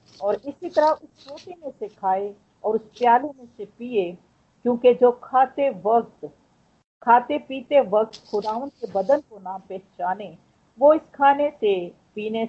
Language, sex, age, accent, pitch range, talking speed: Hindi, female, 50-69, native, 195-260 Hz, 155 wpm